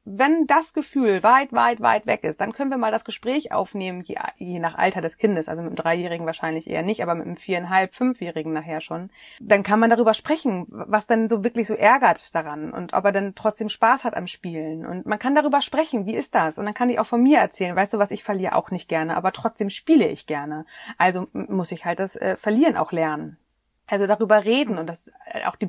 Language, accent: German, German